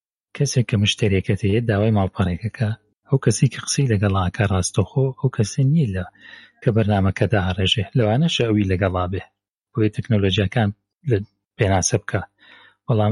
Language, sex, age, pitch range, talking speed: Arabic, male, 40-59, 100-120 Hz, 120 wpm